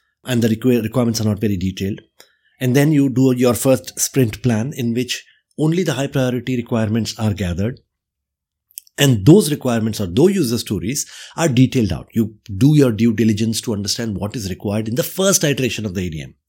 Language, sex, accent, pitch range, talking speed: English, male, Indian, 110-145 Hz, 185 wpm